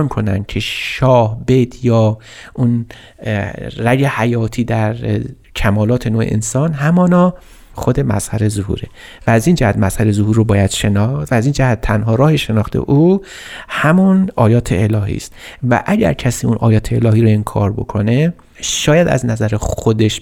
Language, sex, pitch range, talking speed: Persian, male, 110-140 Hz, 150 wpm